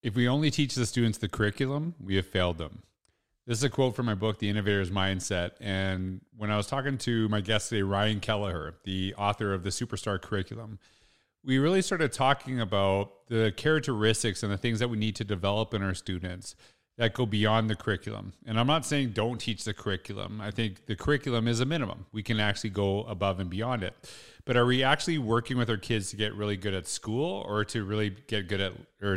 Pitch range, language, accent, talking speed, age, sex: 100-115 Hz, English, American, 220 wpm, 30-49, male